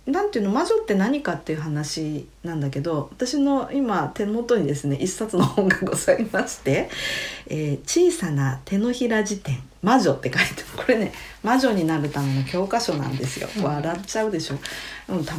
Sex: female